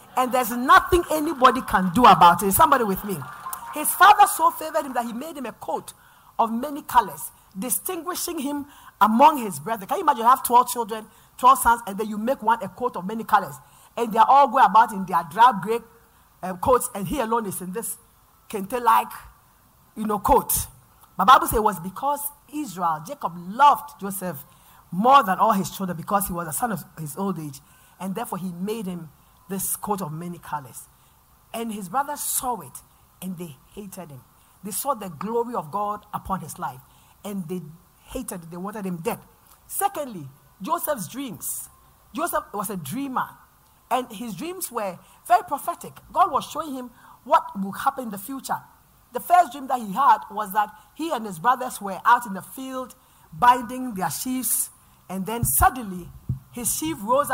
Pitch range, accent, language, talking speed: 190-270 Hz, Nigerian, English, 190 wpm